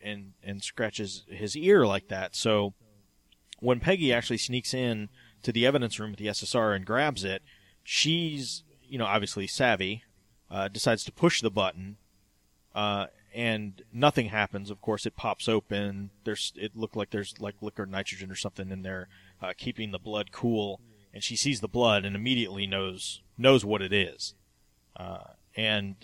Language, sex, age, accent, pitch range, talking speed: English, male, 30-49, American, 100-120 Hz, 170 wpm